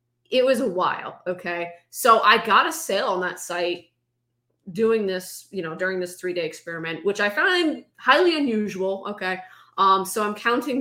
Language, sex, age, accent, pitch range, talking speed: English, female, 20-39, American, 180-240 Hz, 180 wpm